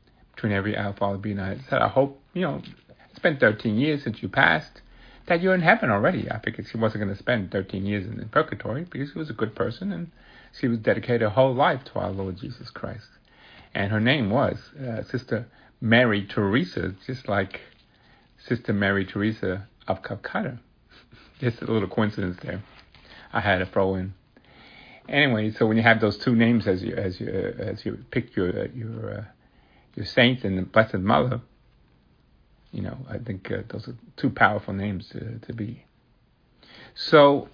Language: English